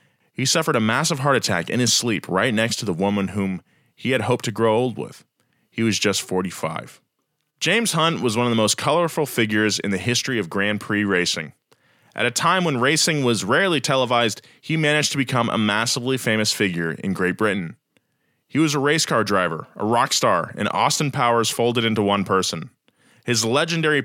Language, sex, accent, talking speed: English, male, American, 195 wpm